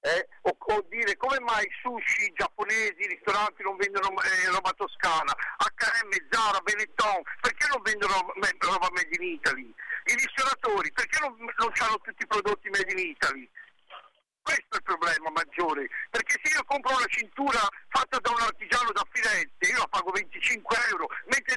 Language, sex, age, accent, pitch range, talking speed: Italian, male, 50-69, native, 235-370 Hz, 170 wpm